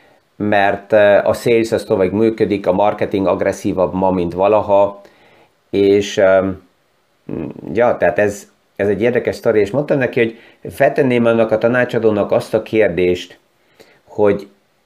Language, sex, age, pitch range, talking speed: Hungarian, male, 50-69, 100-120 Hz, 125 wpm